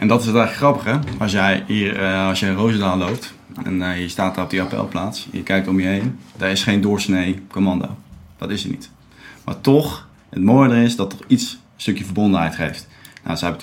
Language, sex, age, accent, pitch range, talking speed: Dutch, male, 20-39, Dutch, 90-110 Hz, 205 wpm